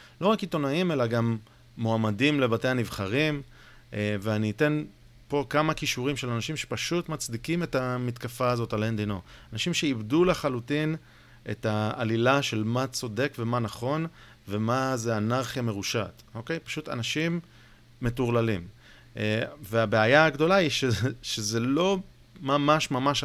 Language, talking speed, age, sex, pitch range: Hebrew, 125 wpm, 30-49, male, 115-155 Hz